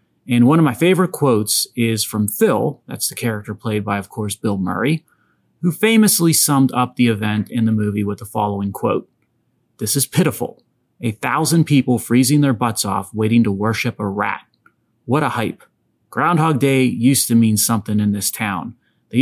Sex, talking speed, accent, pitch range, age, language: male, 185 wpm, American, 110-135 Hz, 30-49, English